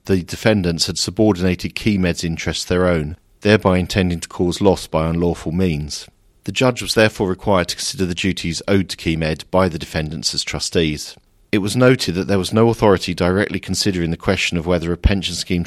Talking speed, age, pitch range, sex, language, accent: 190 wpm, 40-59, 85-100 Hz, male, English, British